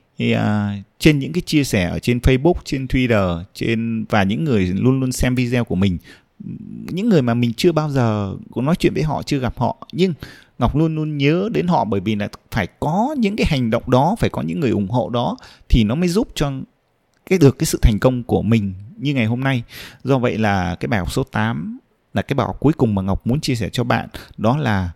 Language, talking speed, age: Vietnamese, 245 wpm, 20-39